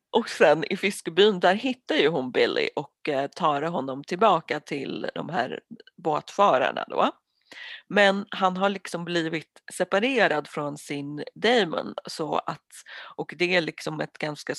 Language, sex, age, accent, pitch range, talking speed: Swedish, female, 30-49, native, 155-225 Hz, 130 wpm